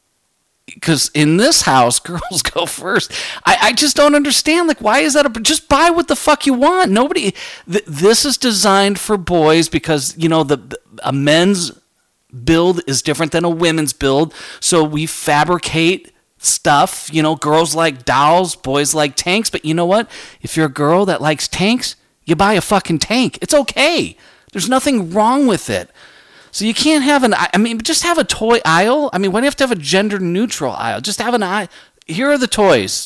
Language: English